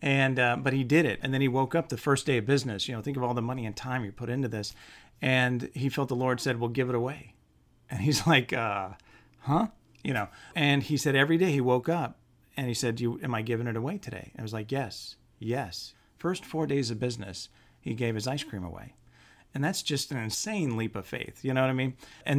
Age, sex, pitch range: 40-59, male, 110-140 Hz